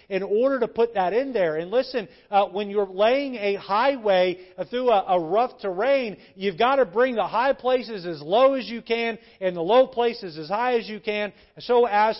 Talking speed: 215 wpm